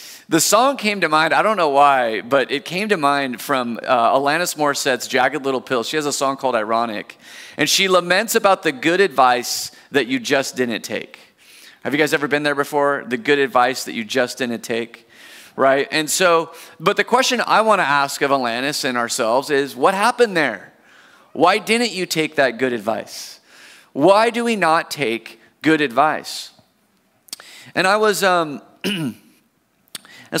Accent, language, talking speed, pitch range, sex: American, English, 180 wpm, 130-185 Hz, male